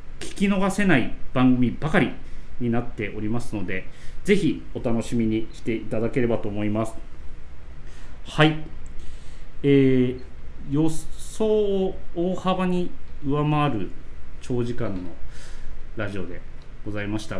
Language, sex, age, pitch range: Japanese, male, 40-59, 90-135 Hz